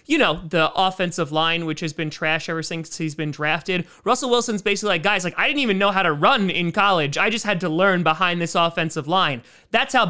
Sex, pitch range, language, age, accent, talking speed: male, 155-205 Hz, English, 30-49, American, 240 wpm